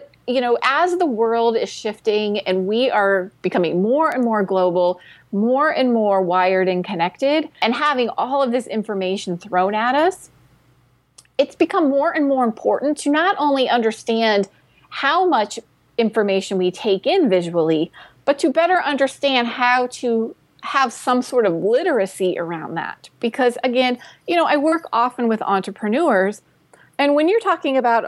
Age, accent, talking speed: 30-49, American, 160 wpm